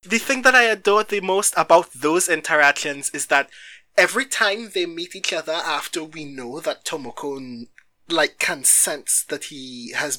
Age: 20-39